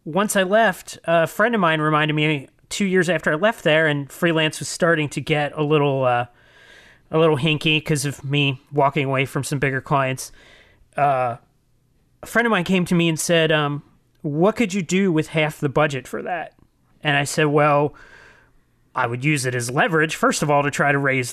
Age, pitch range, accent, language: 30-49, 140-170 Hz, American, English